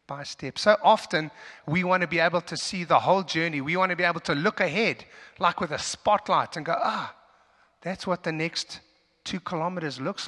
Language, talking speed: English, 205 wpm